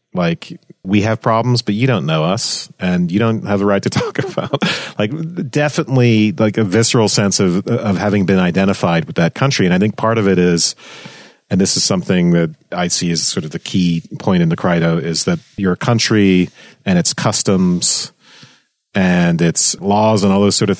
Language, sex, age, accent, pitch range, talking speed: English, male, 40-59, American, 85-110 Hz, 200 wpm